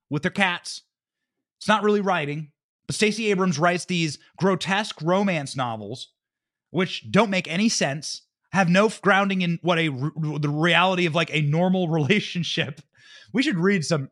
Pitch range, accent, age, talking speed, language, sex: 170-260 Hz, American, 30-49, 160 wpm, English, male